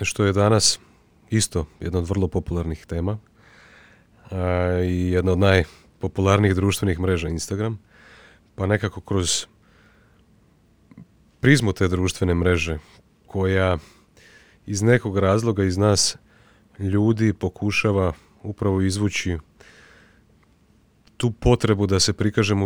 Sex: male